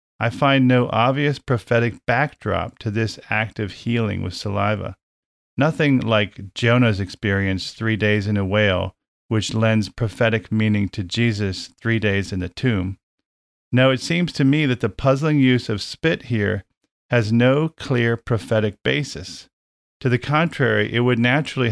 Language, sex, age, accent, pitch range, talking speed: English, male, 40-59, American, 100-125 Hz, 155 wpm